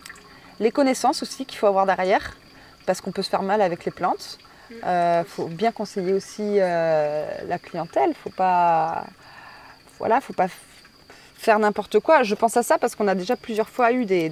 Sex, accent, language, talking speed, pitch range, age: female, French, French, 180 wpm, 170-215 Hz, 20-39